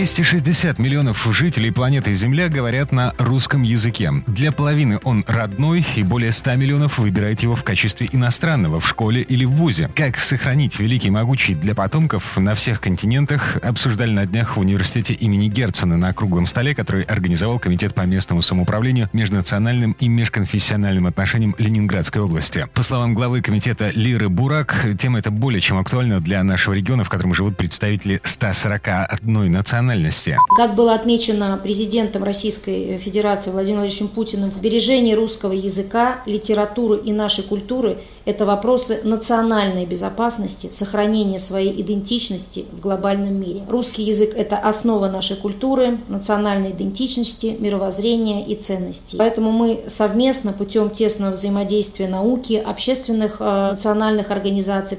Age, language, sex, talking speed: 30-49, Russian, male, 135 wpm